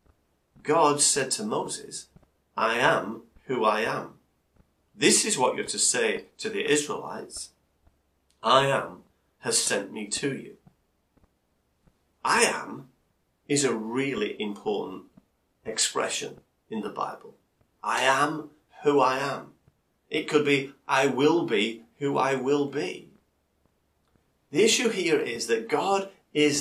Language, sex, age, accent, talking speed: English, male, 40-59, British, 130 wpm